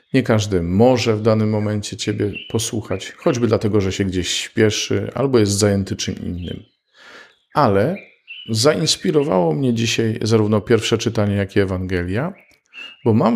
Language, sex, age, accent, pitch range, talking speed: Polish, male, 50-69, native, 100-115 Hz, 140 wpm